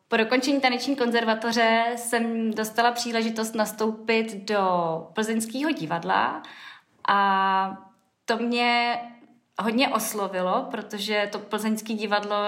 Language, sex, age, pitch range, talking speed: Czech, female, 20-39, 205-240 Hz, 95 wpm